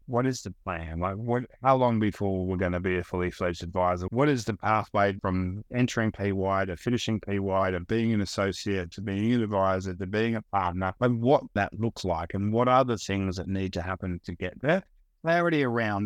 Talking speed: 210 wpm